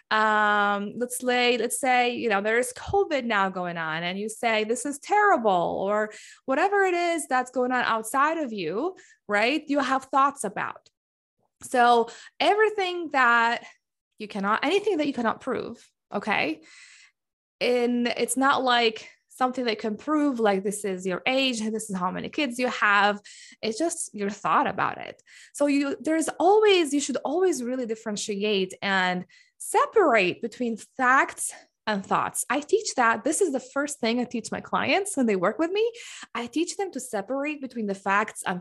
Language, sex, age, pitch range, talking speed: English, female, 20-39, 225-350 Hz, 175 wpm